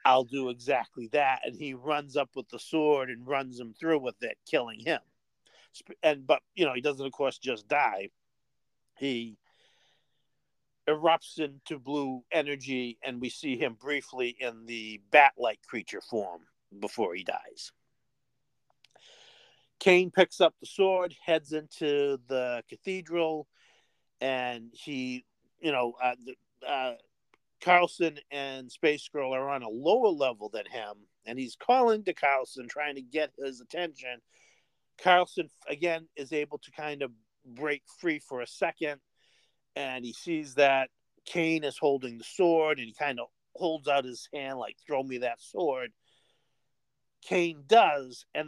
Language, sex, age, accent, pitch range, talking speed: English, male, 50-69, American, 130-160 Hz, 150 wpm